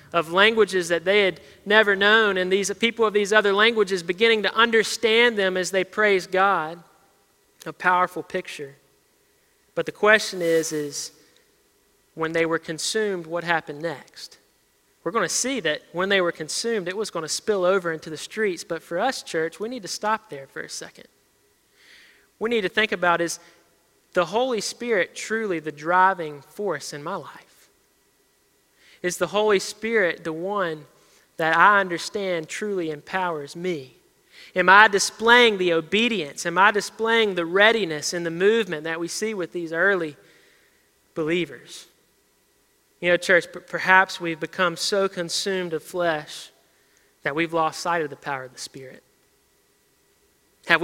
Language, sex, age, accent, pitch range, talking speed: English, male, 30-49, American, 165-205 Hz, 160 wpm